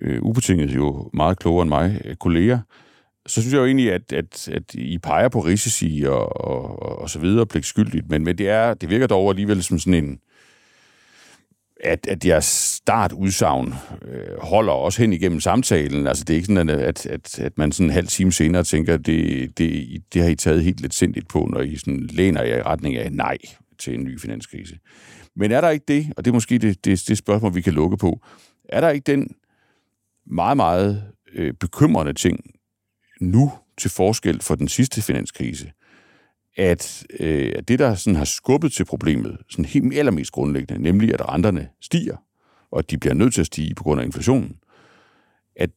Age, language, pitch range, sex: 60-79, Danish, 80-115 Hz, male